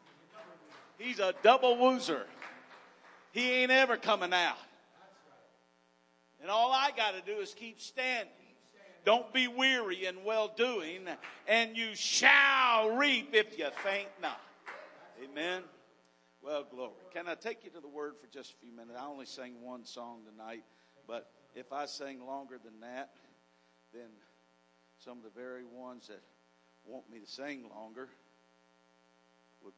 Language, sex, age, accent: English, male, 50-69, American